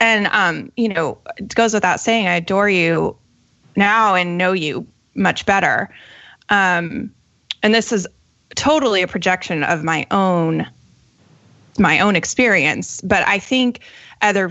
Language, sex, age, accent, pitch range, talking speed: English, female, 20-39, American, 185-230 Hz, 140 wpm